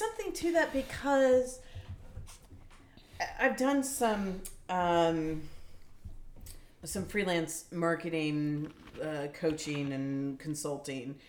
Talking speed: 80 wpm